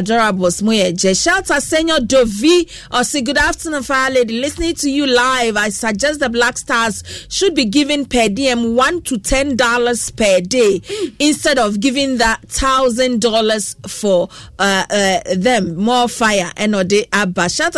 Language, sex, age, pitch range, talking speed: English, female, 40-59, 200-265 Hz, 150 wpm